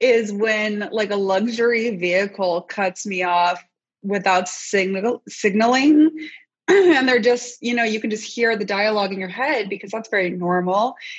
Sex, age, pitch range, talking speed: female, 20-39, 190-230 Hz, 155 wpm